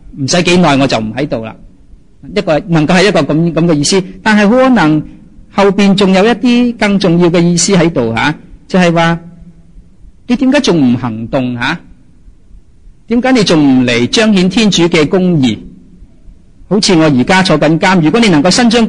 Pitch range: 135-185 Hz